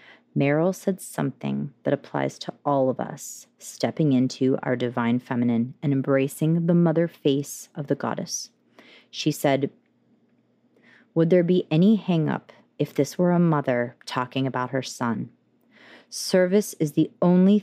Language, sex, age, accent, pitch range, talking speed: English, female, 30-49, American, 140-180 Hz, 145 wpm